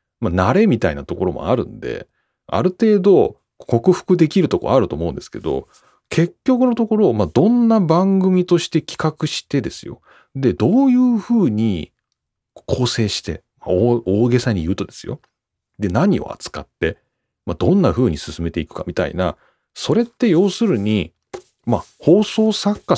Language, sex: Japanese, male